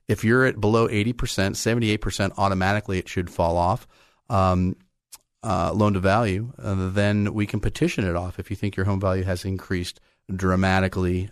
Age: 30-49